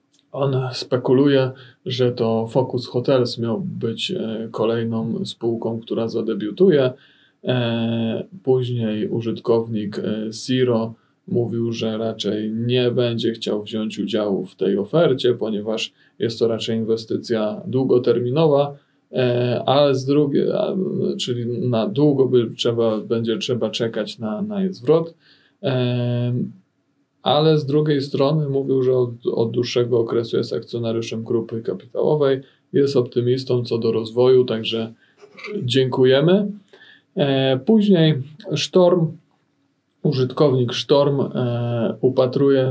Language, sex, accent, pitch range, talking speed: Polish, male, native, 115-140 Hz, 105 wpm